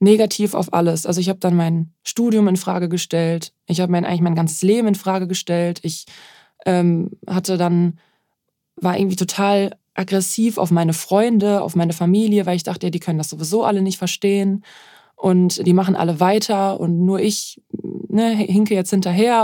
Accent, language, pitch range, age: German, German, 175-200 Hz, 20-39